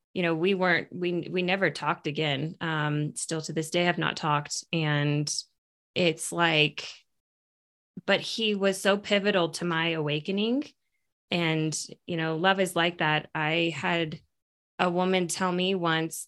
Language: English